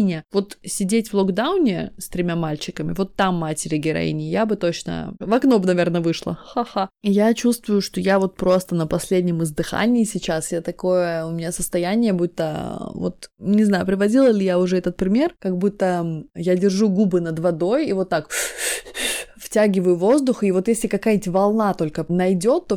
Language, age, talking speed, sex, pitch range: Russian, 20-39, 170 wpm, female, 170-205 Hz